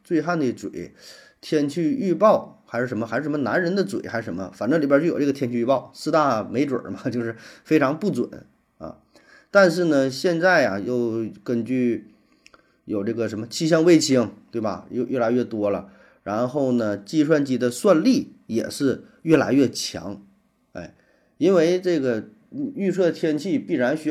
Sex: male